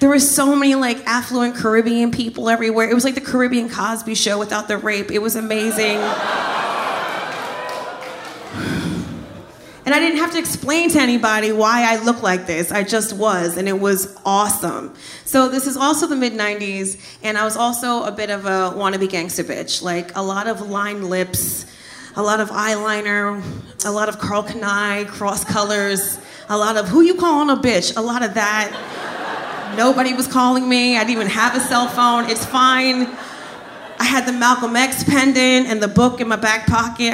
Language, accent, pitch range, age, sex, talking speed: English, American, 205-245 Hz, 30-49, female, 185 wpm